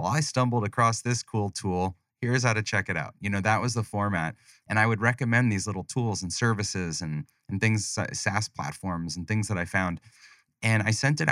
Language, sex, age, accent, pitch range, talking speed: English, male, 30-49, American, 95-120 Hz, 225 wpm